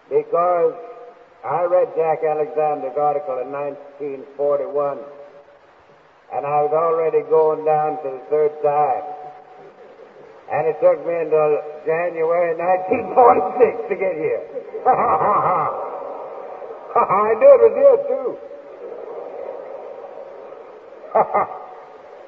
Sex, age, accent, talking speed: male, 60-79, American, 110 wpm